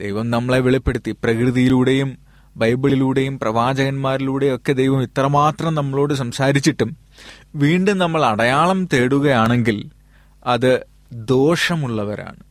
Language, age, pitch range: Malayalam, 30-49, 115-155 Hz